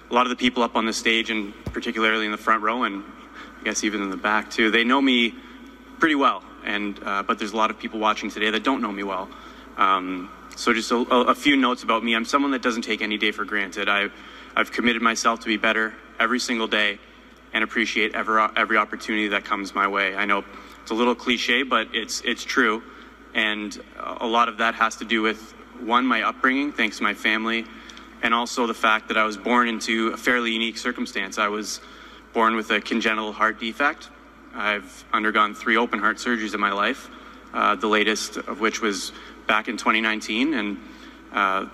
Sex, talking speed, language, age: male, 210 wpm, English, 20-39